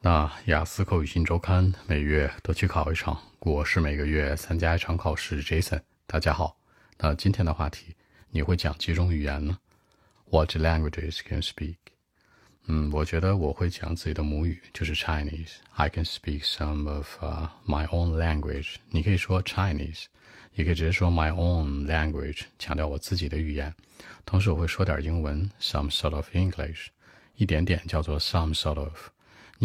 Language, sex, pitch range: Chinese, male, 75-95 Hz